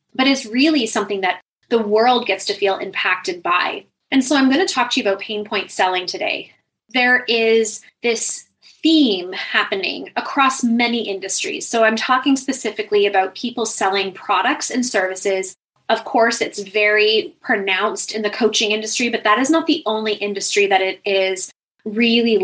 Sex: female